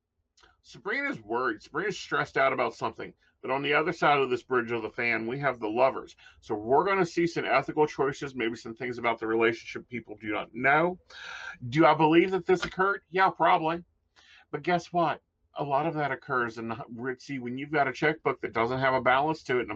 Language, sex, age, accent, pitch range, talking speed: English, male, 40-59, American, 120-160 Hz, 220 wpm